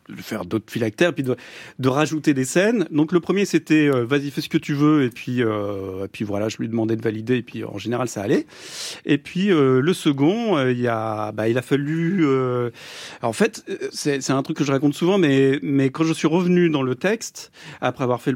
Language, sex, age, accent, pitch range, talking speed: French, male, 40-59, French, 125-160 Hz, 245 wpm